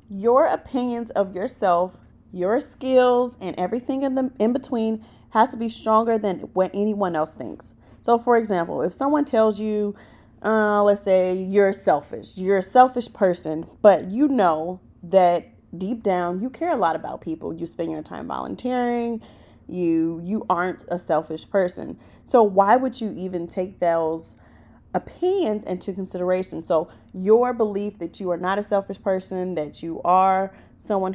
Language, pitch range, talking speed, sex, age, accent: English, 180-235 Hz, 160 wpm, female, 30-49, American